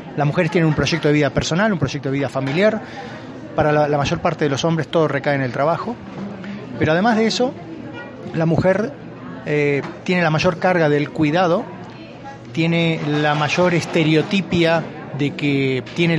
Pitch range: 145-180 Hz